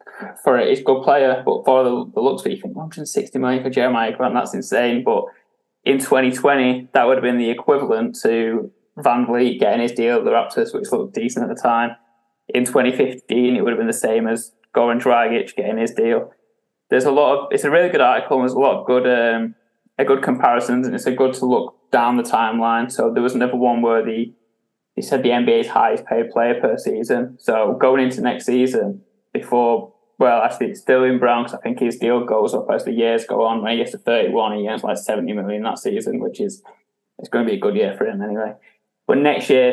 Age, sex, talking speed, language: 10-29, male, 230 wpm, English